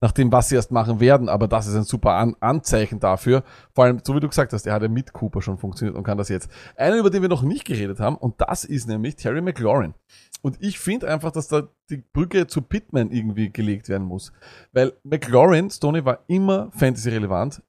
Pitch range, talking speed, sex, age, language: 110-150 Hz, 225 wpm, male, 30-49, German